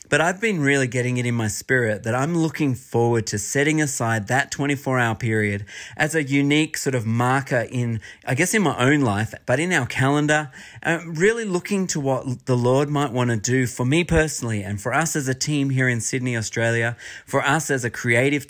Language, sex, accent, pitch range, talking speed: English, male, Australian, 120-155 Hz, 210 wpm